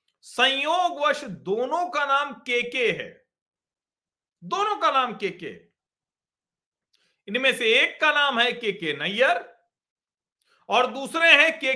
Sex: male